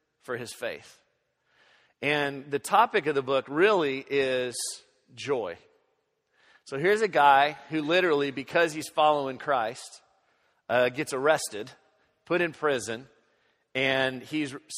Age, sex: 40-59, male